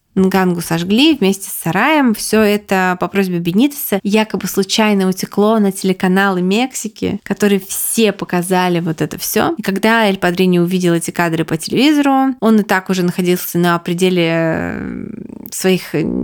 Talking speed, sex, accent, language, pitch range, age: 150 wpm, female, native, Russian, 180-220 Hz, 20-39